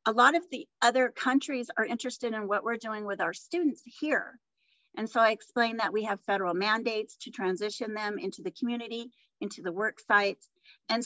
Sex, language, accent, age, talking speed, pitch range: female, English, American, 40-59, 195 wpm, 220-275 Hz